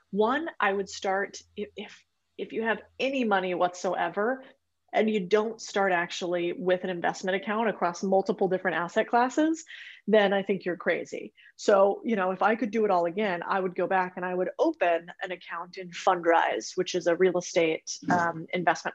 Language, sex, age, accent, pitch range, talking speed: English, female, 30-49, American, 175-210 Hz, 190 wpm